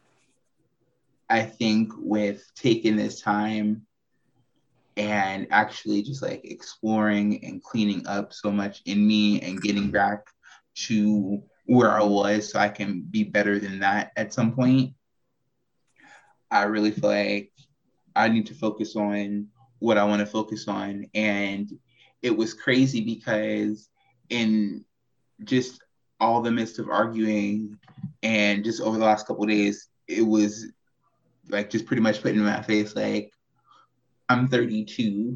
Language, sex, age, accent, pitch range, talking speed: English, male, 20-39, American, 105-120 Hz, 145 wpm